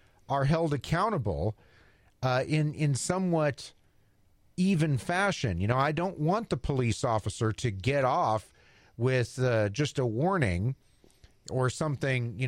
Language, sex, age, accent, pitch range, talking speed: English, male, 40-59, American, 110-155 Hz, 135 wpm